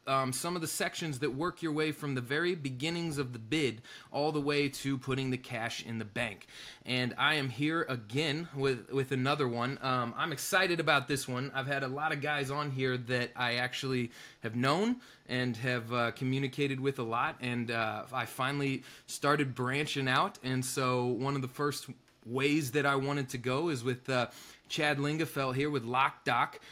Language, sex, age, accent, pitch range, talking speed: English, male, 20-39, American, 125-145 Hz, 200 wpm